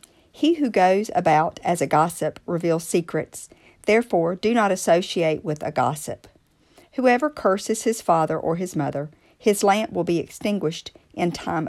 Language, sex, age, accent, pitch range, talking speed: English, female, 50-69, American, 155-195 Hz, 155 wpm